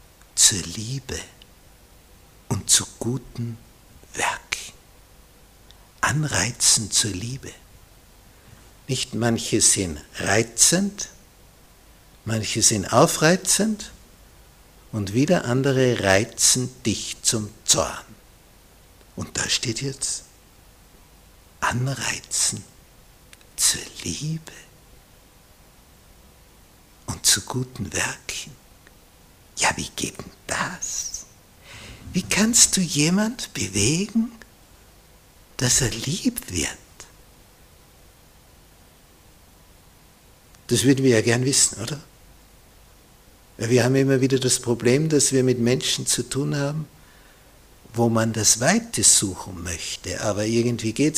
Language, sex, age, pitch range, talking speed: German, male, 60-79, 100-135 Hz, 90 wpm